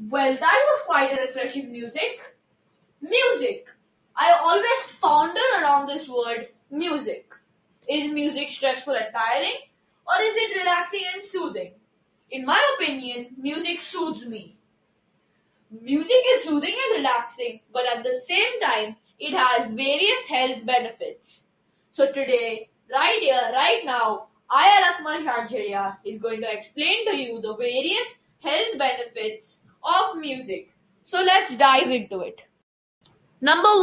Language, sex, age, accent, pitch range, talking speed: English, female, 20-39, Indian, 245-360 Hz, 130 wpm